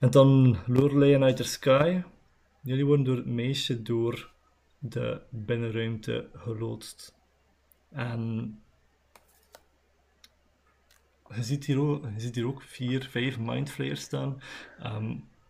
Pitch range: 115-130 Hz